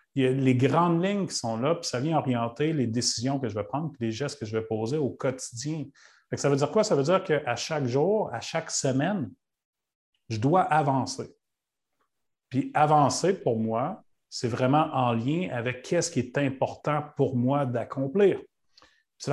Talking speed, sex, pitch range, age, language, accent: 190 wpm, male, 125-160 Hz, 40-59, French, Canadian